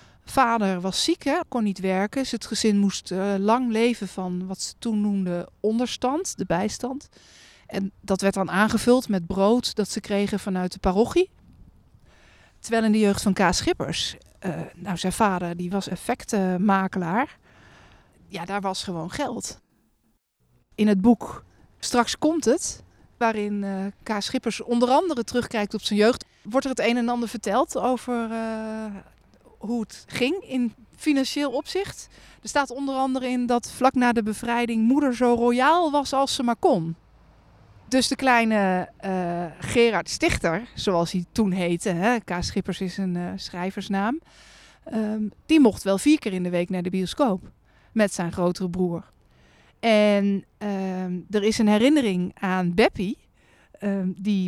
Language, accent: Dutch, Dutch